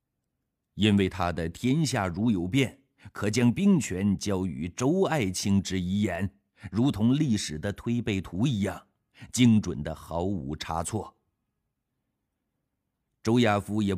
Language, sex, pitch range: Chinese, male, 90-115 Hz